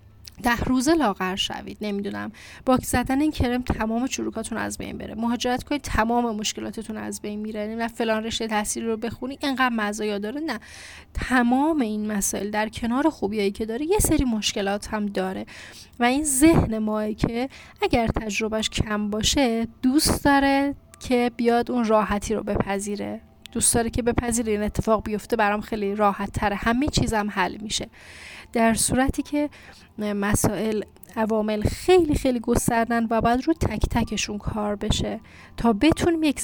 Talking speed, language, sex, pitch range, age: 155 wpm, Persian, female, 205-245 Hz, 10-29